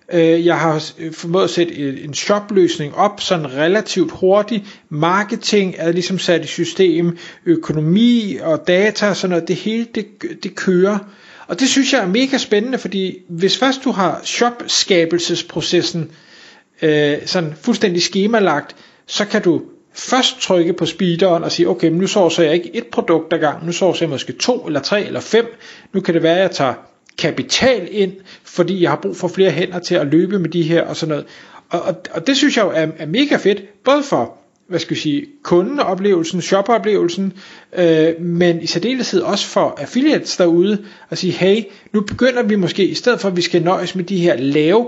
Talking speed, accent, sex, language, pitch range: 190 wpm, native, male, Danish, 165-205 Hz